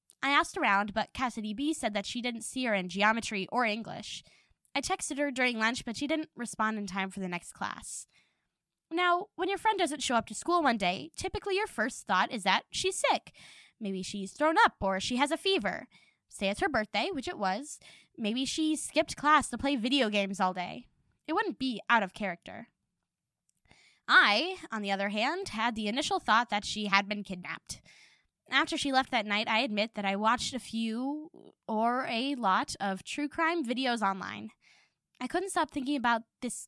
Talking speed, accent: 200 wpm, American